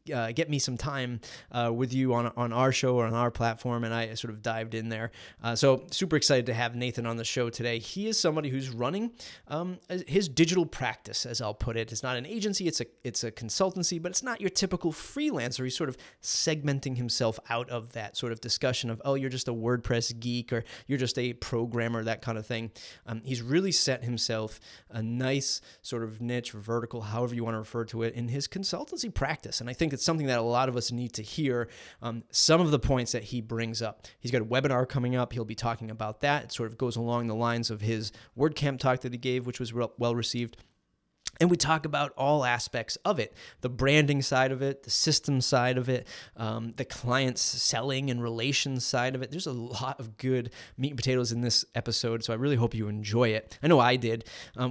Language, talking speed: English, 235 wpm